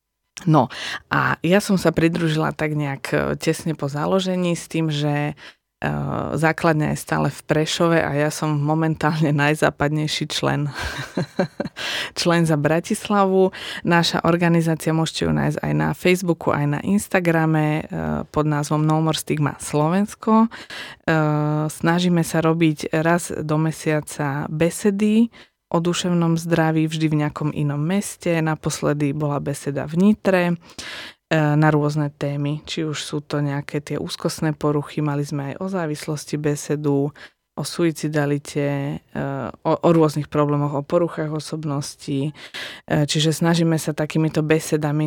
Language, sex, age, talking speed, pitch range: Slovak, female, 20-39, 130 wpm, 145-160 Hz